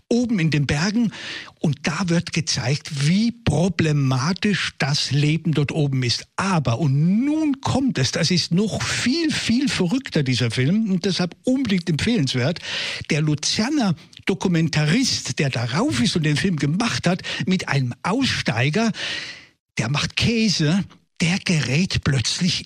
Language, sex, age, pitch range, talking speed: German, male, 60-79, 150-215 Hz, 140 wpm